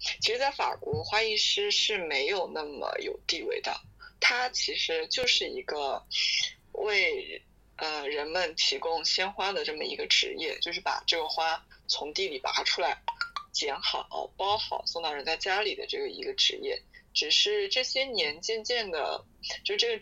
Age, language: 20-39, Chinese